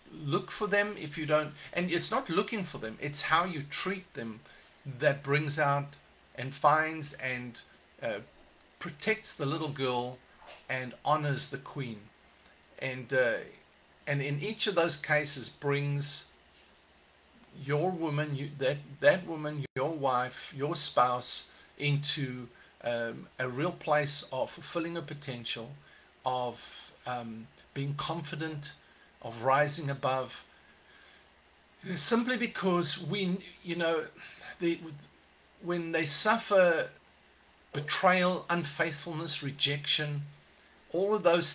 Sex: male